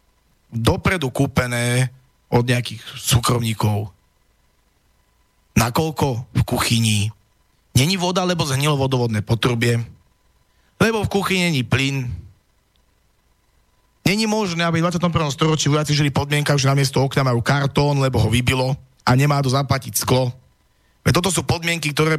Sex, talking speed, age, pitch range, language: male, 125 wpm, 30-49, 120-155 Hz, Slovak